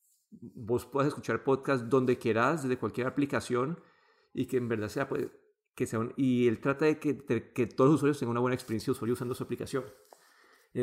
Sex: male